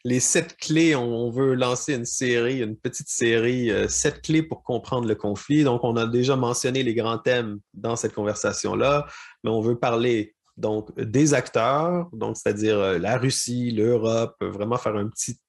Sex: male